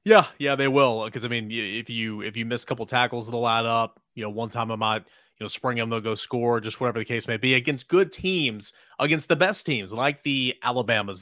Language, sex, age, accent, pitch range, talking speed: English, male, 30-49, American, 115-135 Hz, 250 wpm